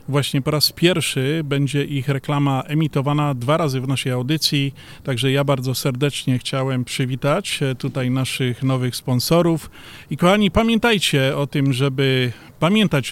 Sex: male